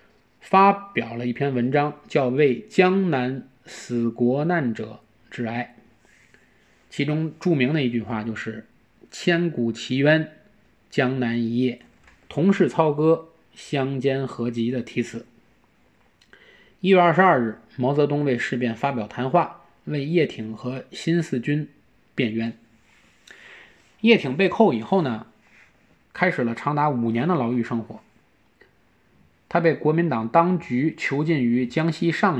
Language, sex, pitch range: Chinese, male, 120-170 Hz